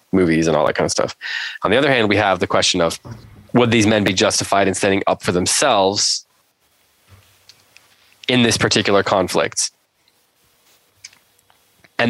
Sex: male